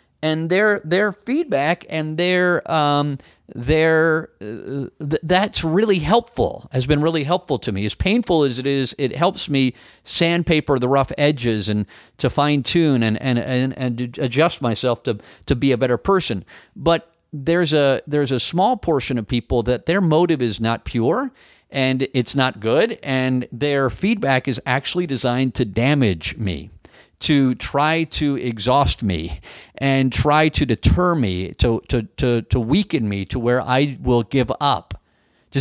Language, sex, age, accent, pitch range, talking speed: English, male, 50-69, American, 125-170 Hz, 165 wpm